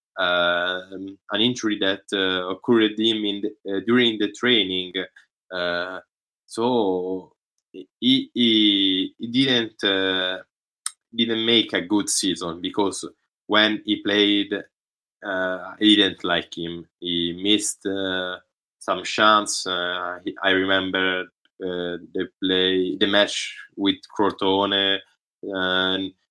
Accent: Italian